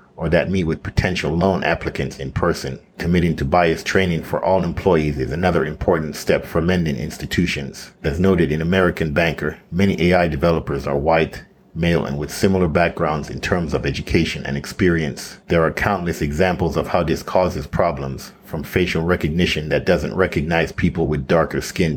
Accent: American